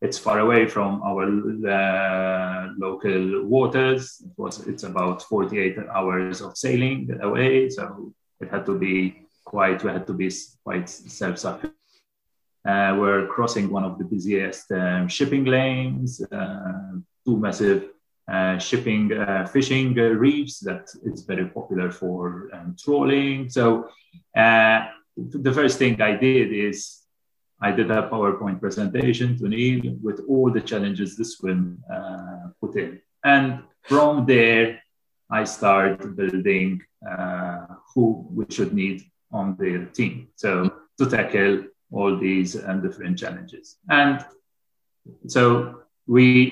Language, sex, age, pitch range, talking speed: English, male, 30-49, 95-130 Hz, 135 wpm